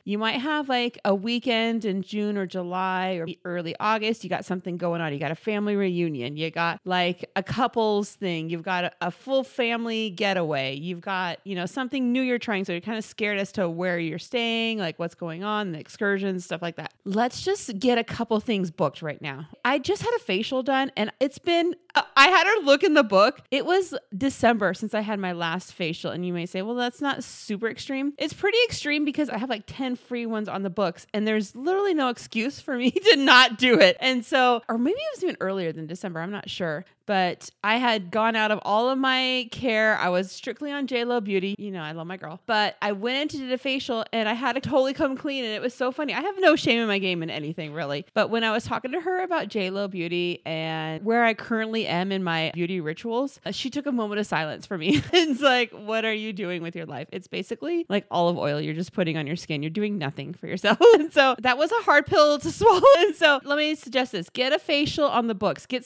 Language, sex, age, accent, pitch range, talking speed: English, female, 30-49, American, 180-260 Hz, 240 wpm